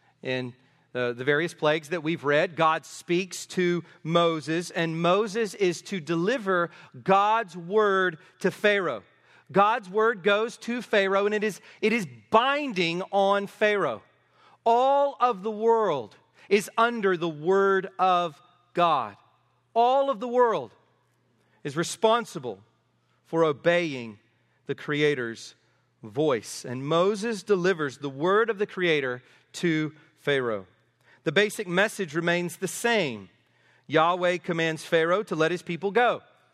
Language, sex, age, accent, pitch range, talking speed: English, male, 40-59, American, 160-210 Hz, 130 wpm